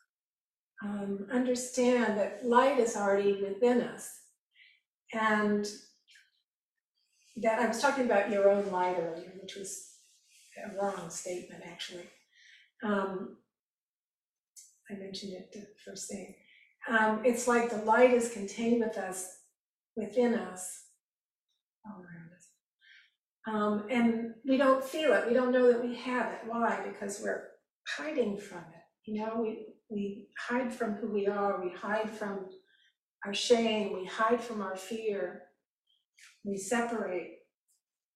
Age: 40-59